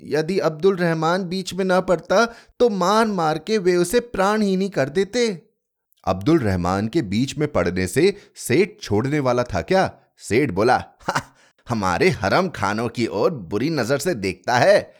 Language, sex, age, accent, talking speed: Hindi, male, 30-49, native, 170 wpm